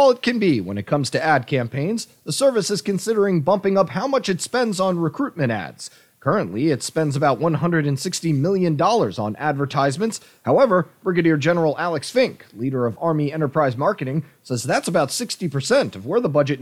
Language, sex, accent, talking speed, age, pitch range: English, male, American, 180 wpm, 30-49, 145-200 Hz